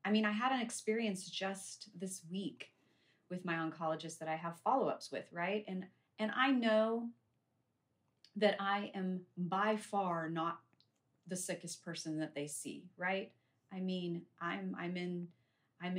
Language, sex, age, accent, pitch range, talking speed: English, female, 30-49, American, 155-195 Hz, 155 wpm